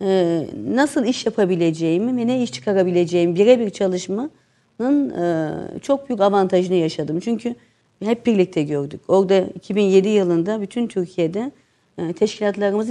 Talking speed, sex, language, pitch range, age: 105 wpm, female, Turkish, 170-230 Hz, 50-69